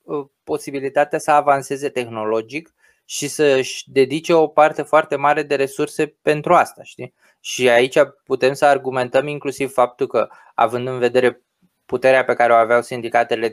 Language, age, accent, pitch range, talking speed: Romanian, 20-39, native, 115-150 Hz, 145 wpm